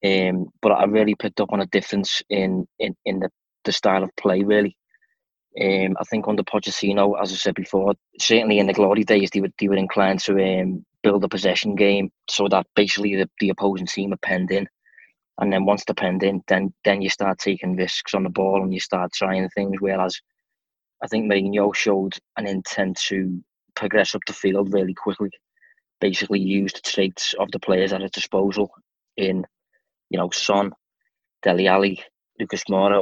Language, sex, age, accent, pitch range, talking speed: English, male, 20-39, British, 95-105 Hz, 190 wpm